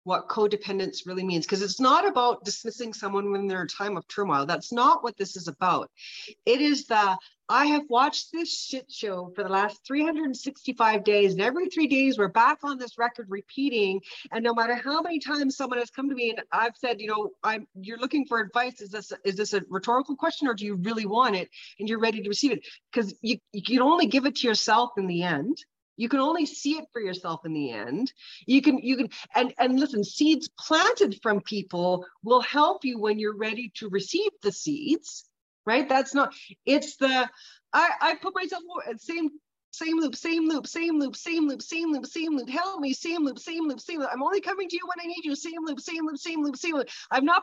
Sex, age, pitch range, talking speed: female, 40-59, 210-305 Hz, 230 wpm